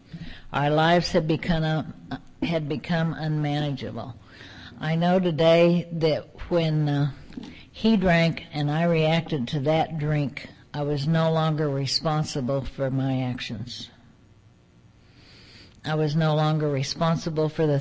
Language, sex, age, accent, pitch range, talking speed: English, female, 50-69, American, 125-160 Hz, 120 wpm